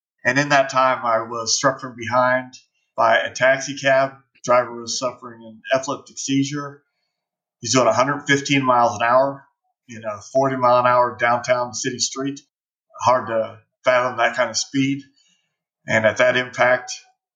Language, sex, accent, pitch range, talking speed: English, male, American, 120-140 Hz, 150 wpm